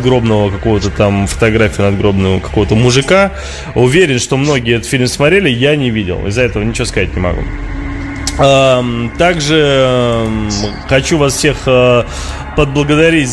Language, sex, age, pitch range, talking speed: Russian, male, 20-39, 110-135 Hz, 120 wpm